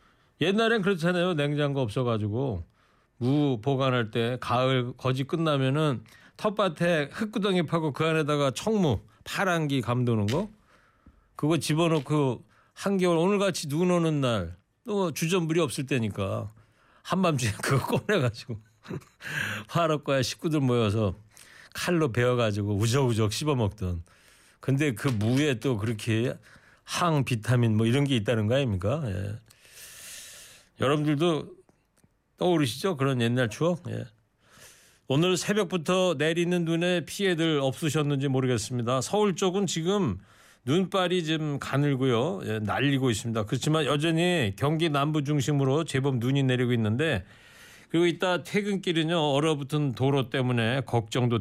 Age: 40-59